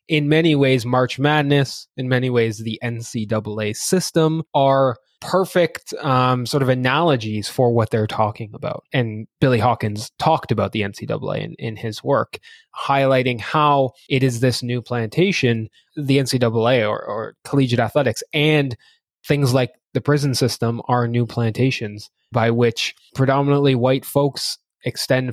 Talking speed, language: 145 wpm, English